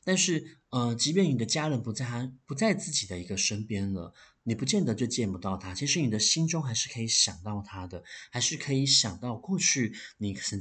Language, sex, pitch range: Chinese, male, 100-140 Hz